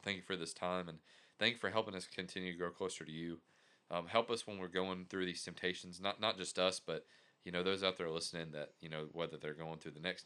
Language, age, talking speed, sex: English, 30-49, 270 wpm, male